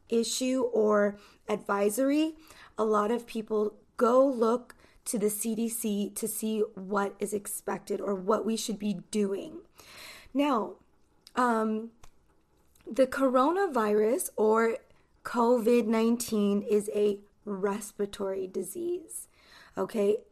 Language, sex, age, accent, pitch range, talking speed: English, female, 20-39, American, 205-255 Hz, 100 wpm